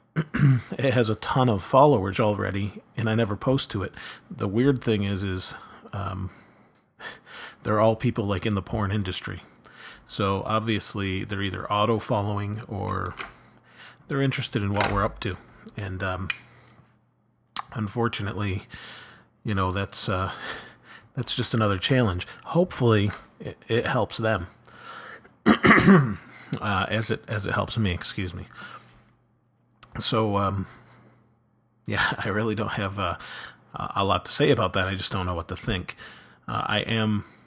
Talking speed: 145 wpm